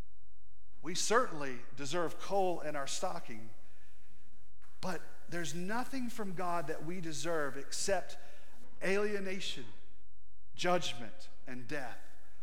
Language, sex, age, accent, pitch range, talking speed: English, male, 40-59, American, 175-255 Hz, 95 wpm